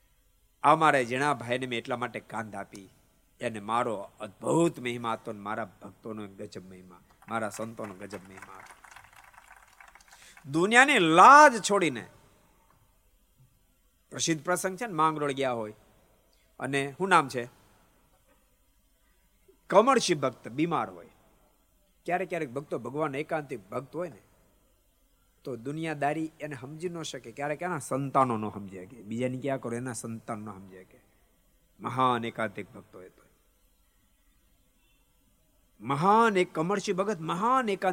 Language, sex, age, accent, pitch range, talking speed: Gujarati, male, 50-69, native, 110-165 Hz, 50 wpm